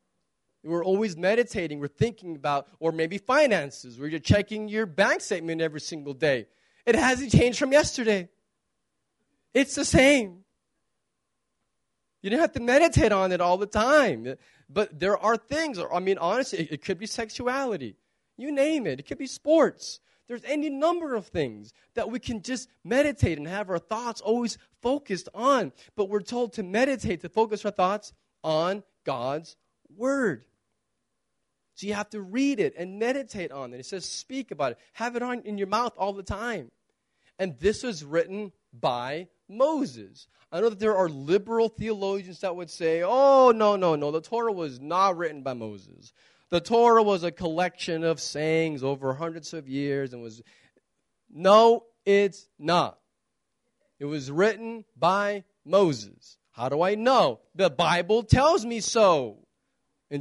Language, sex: English, male